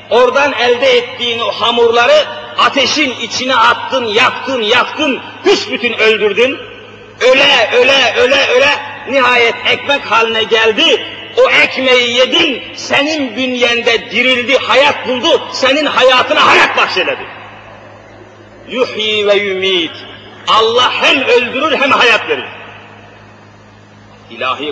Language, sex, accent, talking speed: Turkish, male, native, 100 wpm